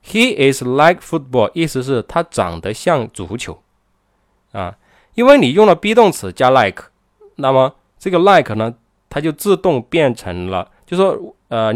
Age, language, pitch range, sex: 20-39, Chinese, 95-140 Hz, male